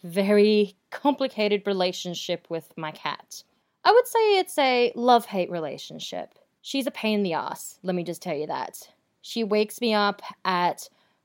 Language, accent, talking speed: English, Australian, 160 wpm